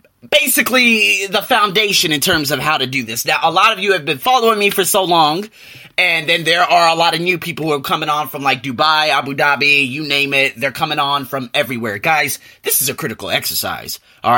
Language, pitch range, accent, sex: English, 130-185 Hz, American, male